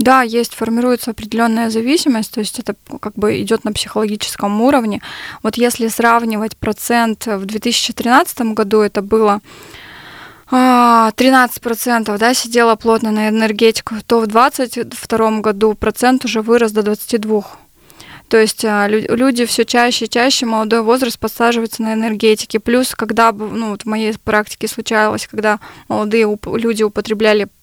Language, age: Russian, 20-39